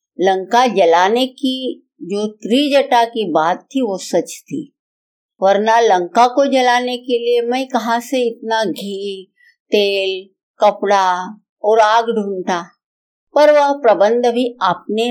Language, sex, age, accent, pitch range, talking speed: Hindi, female, 50-69, native, 190-260 Hz, 125 wpm